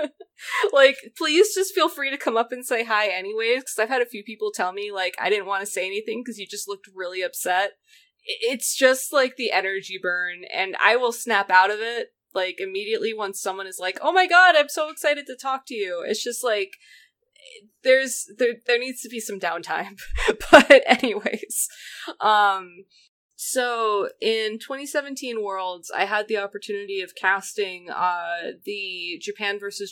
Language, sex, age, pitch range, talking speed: English, female, 20-39, 185-265 Hz, 180 wpm